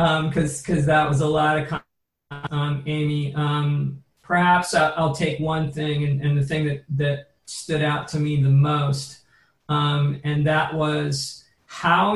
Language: English